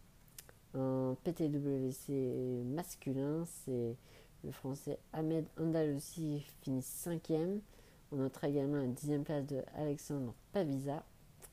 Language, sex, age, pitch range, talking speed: English, female, 40-59, 135-160 Hz, 105 wpm